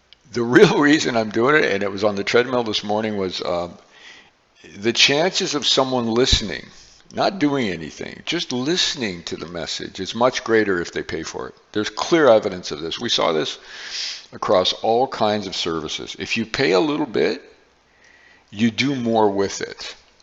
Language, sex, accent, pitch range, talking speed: English, male, American, 95-115 Hz, 180 wpm